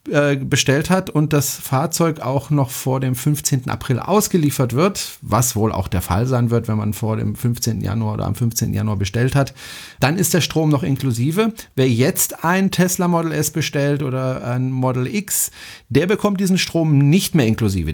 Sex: male